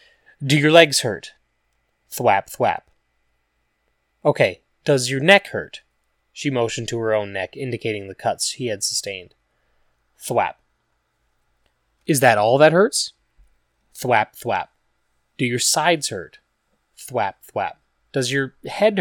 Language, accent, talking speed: English, American, 125 wpm